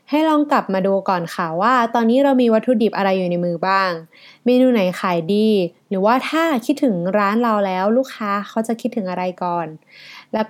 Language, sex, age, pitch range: Thai, female, 20-39, 185-240 Hz